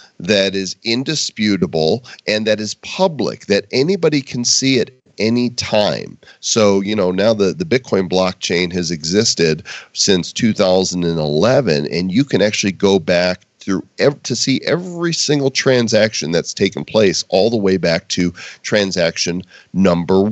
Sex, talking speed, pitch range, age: male, 140 wpm, 95-130 Hz, 40-59